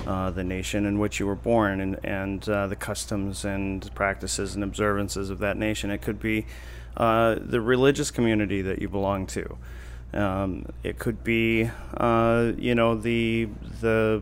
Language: English